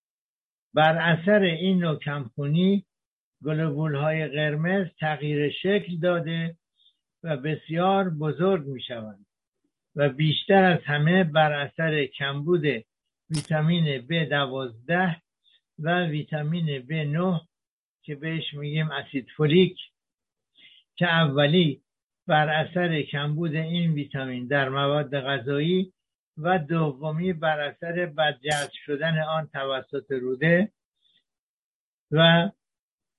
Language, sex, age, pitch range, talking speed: Persian, male, 60-79, 140-170 Hz, 95 wpm